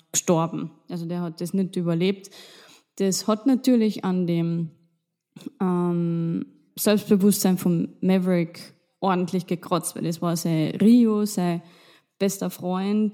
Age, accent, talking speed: 20-39, German, 120 wpm